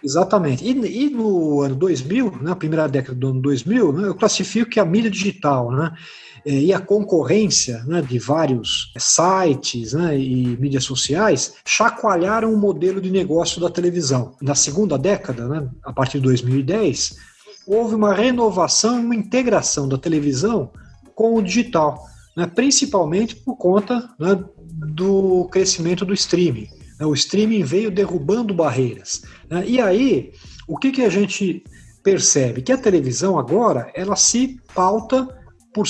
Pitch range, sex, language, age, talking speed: 145-200 Hz, male, Portuguese, 50-69, 145 wpm